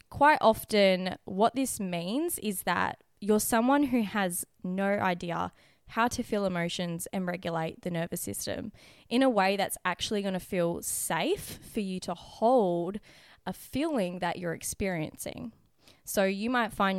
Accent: Australian